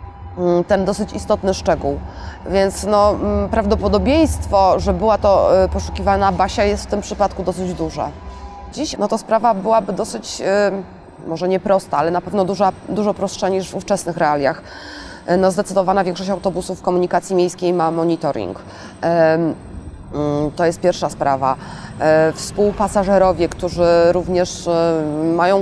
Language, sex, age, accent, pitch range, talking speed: Polish, female, 20-39, native, 170-205 Hz, 120 wpm